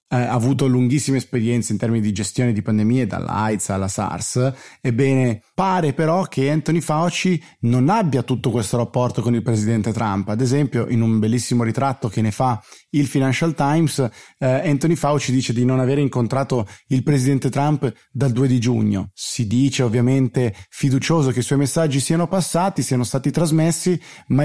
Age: 30-49